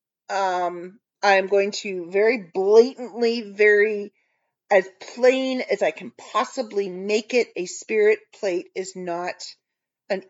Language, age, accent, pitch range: English, 40-59, American, 170-215 Hz